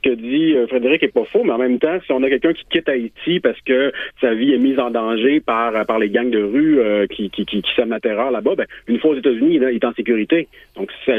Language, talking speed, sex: French, 270 wpm, male